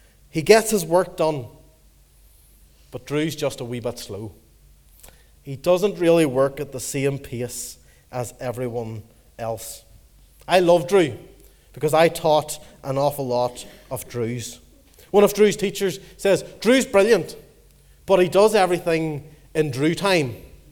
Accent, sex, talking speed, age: Irish, male, 140 wpm, 30-49